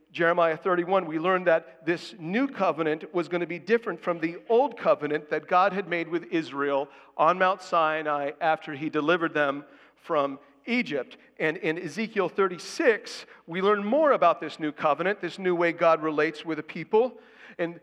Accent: American